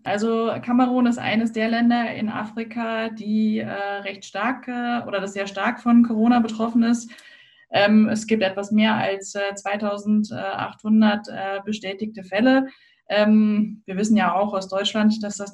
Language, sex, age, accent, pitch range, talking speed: German, female, 20-39, German, 200-225 Hz, 160 wpm